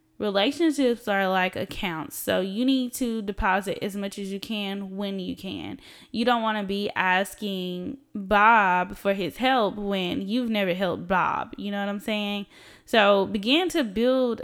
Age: 10-29